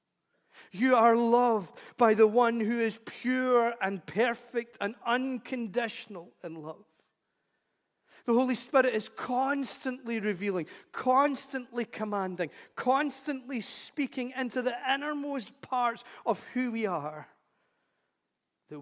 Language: English